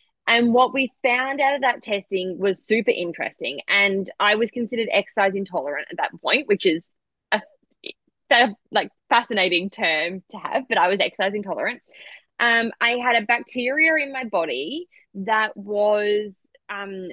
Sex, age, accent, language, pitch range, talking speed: female, 20-39, Australian, English, 195-240 Hz, 160 wpm